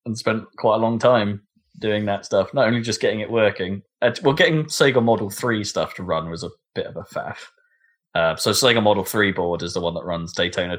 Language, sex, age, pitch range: English, male, 20-39, 105-155 Hz